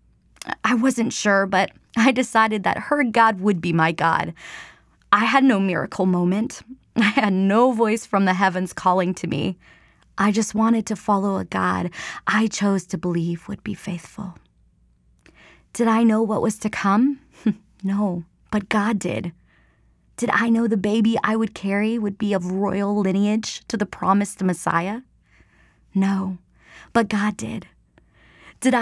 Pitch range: 185-225 Hz